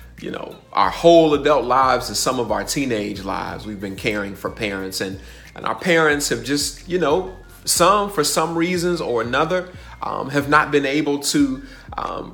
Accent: American